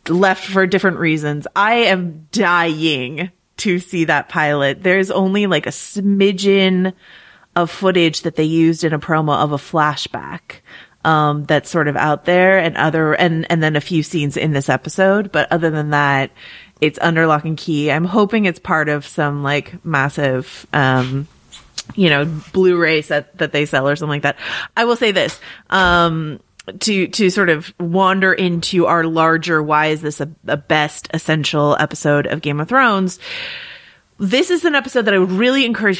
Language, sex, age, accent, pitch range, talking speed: English, female, 30-49, American, 150-190 Hz, 180 wpm